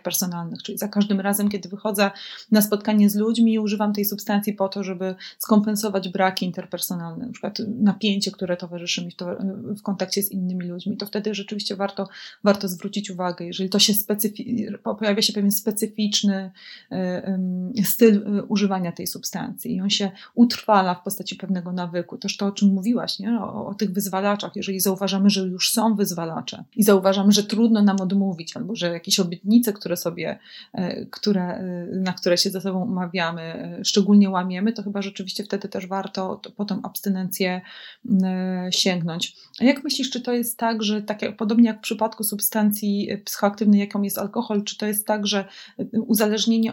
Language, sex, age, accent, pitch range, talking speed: Polish, female, 30-49, native, 195-215 Hz, 165 wpm